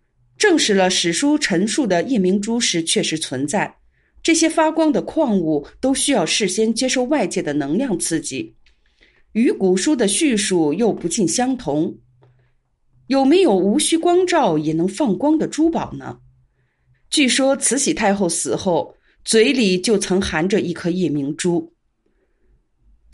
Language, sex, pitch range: Chinese, female, 170-275 Hz